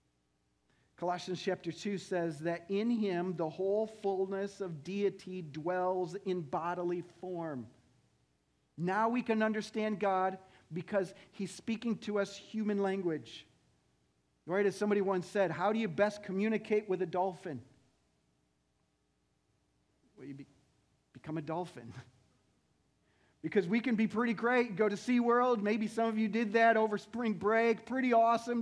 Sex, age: male, 40-59